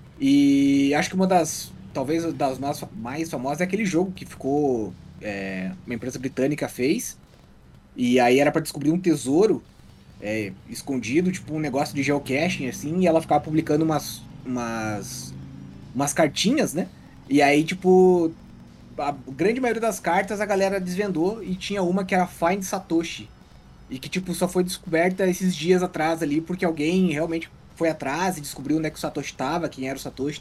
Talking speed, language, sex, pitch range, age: 175 wpm, Portuguese, male, 120-170 Hz, 20-39